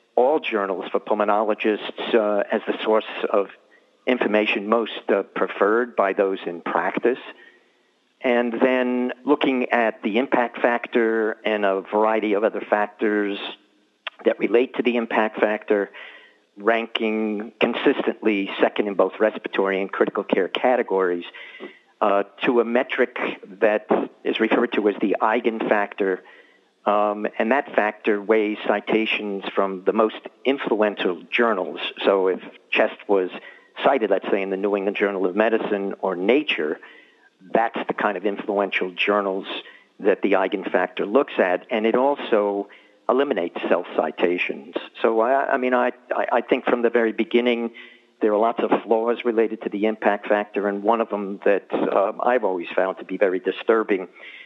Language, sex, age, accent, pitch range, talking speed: English, male, 50-69, American, 100-115 Hz, 150 wpm